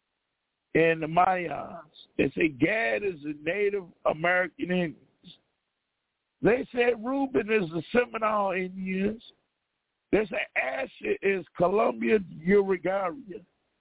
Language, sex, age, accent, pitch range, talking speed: English, male, 50-69, American, 165-220 Hz, 105 wpm